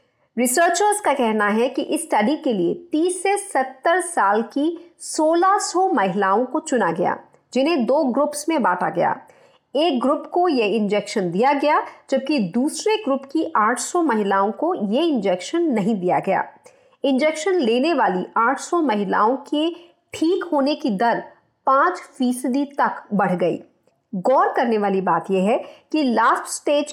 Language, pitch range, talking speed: Hindi, 230-320 Hz, 150 wpm